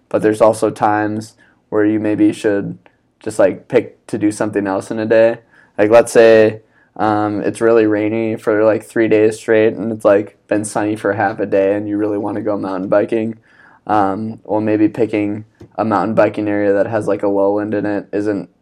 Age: 20-39